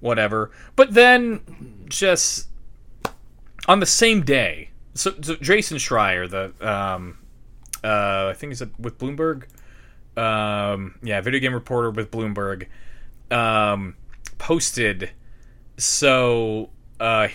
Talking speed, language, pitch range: 100 wpm, English, 105-150 Hz